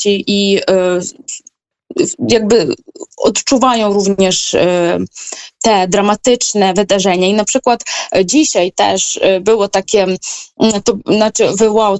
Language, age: Polish, 20-39